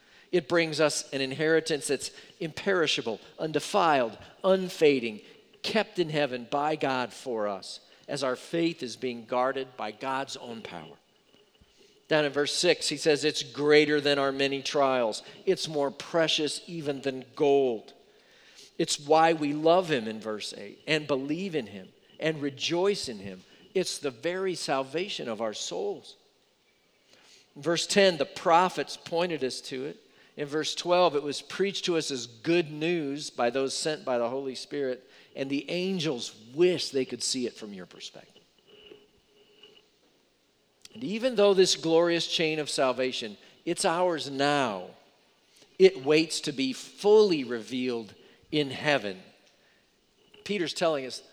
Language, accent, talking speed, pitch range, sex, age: English, American, 145 wpm, 130-170 Hz, male, 50-69